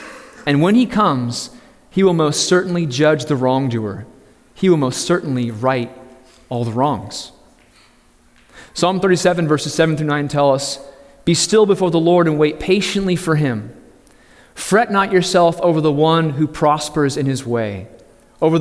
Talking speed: 160 wpm